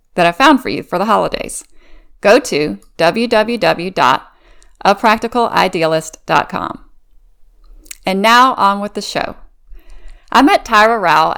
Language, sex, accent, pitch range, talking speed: English, female, American, 180-245 Hz, 110 wpm